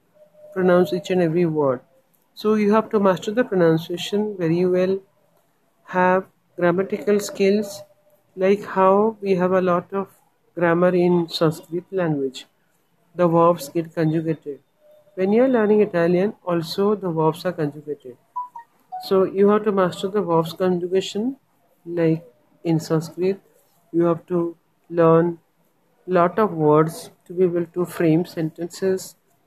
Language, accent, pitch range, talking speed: English, Indian, 165-205 Hz, 135 wpm